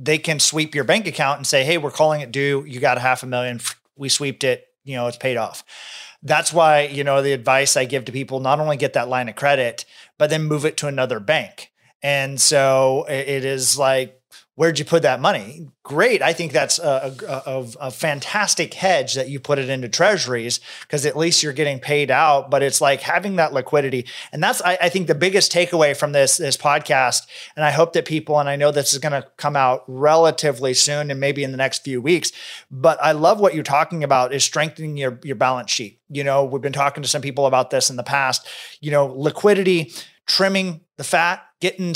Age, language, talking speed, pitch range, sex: 30-49, English, 225 wpm, 135-165 Hz, male